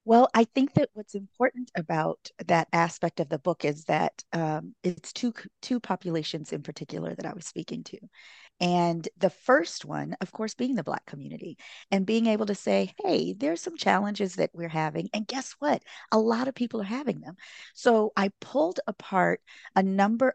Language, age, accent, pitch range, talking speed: English, 40-59, American, 170-230 Hz, 190 wpm